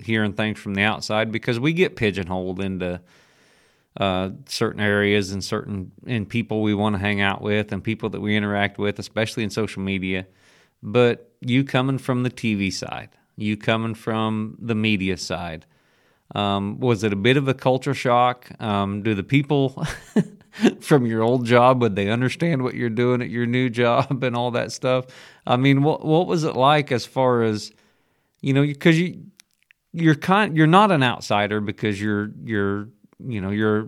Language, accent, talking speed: English, American, 180 wpm